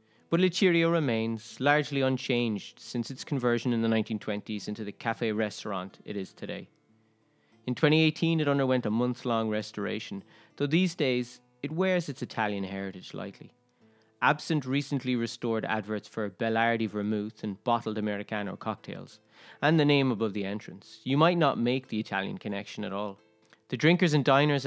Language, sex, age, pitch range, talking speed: English, male, 30-49, 110-135 Hz, 155 wpm